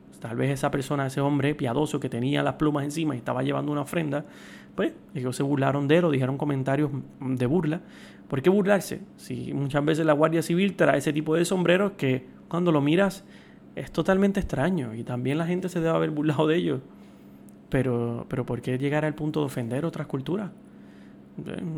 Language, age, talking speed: Spanish, 30-49, 195 wpm